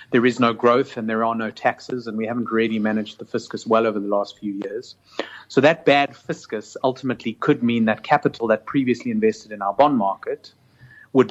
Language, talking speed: English, 210 wpm